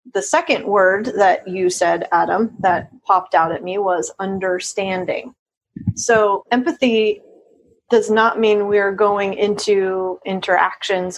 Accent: American